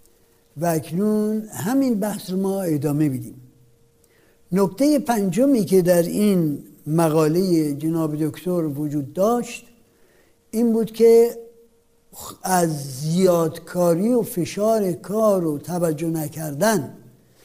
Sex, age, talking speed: male, 60-79, 100 wpm